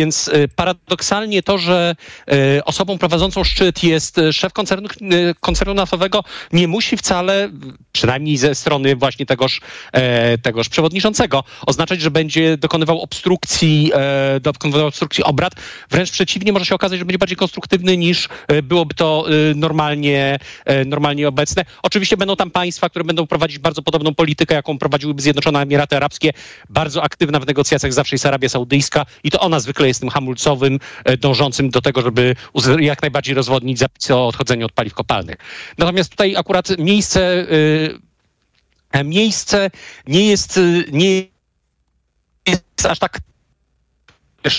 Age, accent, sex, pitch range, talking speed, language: 40-59, native, male, 140-180 Hz, 130 wpm, Polish